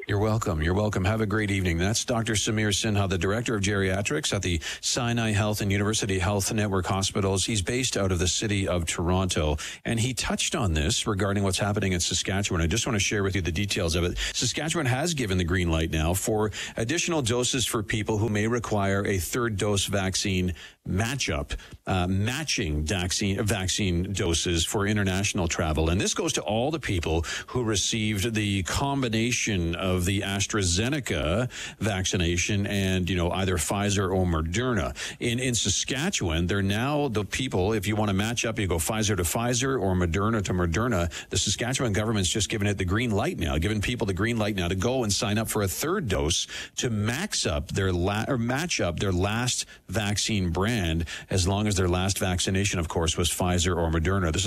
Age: 50-69